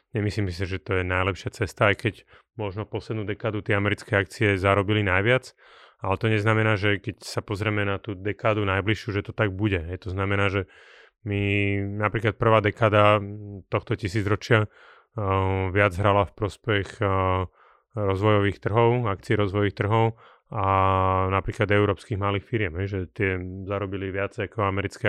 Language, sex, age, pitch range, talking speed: Slovak, male, 30-49, 95-110 Hz, 155 wpm